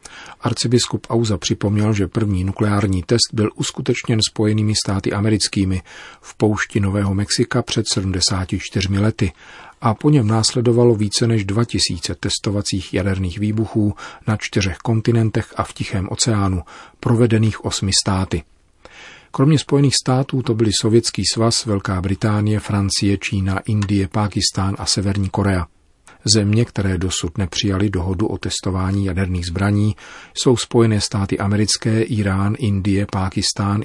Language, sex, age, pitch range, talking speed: Czech, male, 40-59, 95-110 Hz, 125 wpm